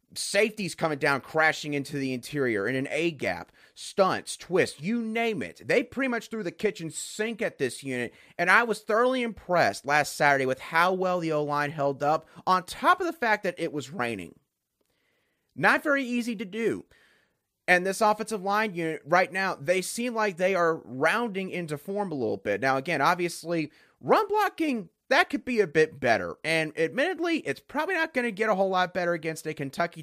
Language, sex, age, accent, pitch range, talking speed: English, male, 30-49, American, 140-210 Hz, 190 wpm